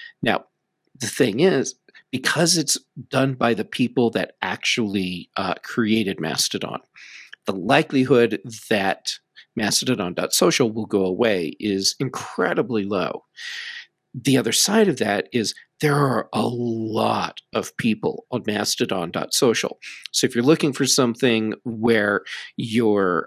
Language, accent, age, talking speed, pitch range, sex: English, American, 40-59, 120 wpm, 110-140 Hz, male